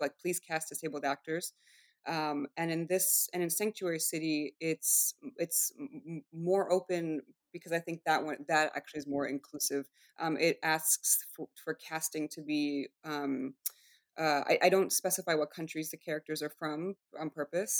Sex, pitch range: female, 150-180 Hz